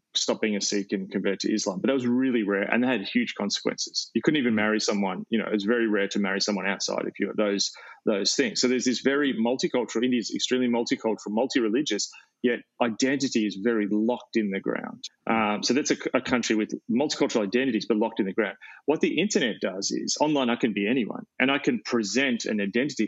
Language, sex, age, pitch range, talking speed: English, male, 30-49, 110-135 Hz, 220 wpm